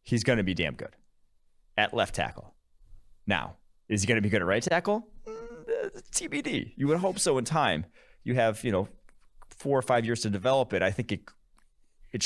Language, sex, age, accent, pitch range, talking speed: English, male, 30-49, American, 90-125 Hz, 200 wpm